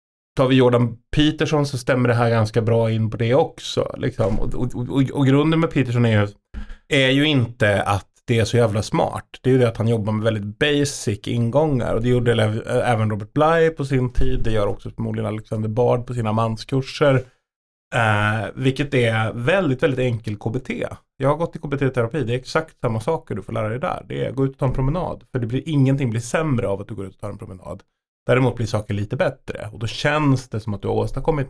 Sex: male